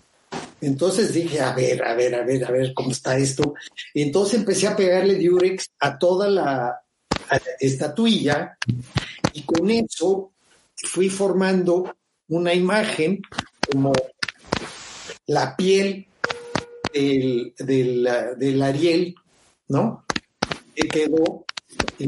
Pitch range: 145-195 Hz